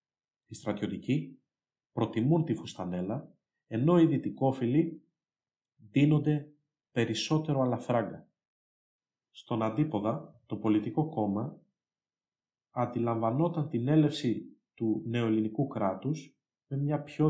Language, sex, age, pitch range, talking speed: Greek, male, 40-59, 110-150 Hz, 85 wpm